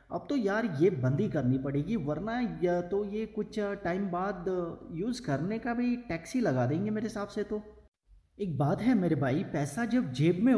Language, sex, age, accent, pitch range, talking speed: Hindi, male, 30-49, native, 140-205 Hz, 195 wpm